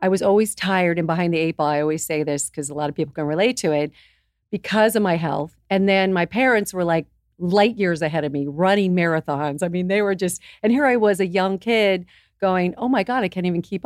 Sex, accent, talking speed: female, American, 255 wpm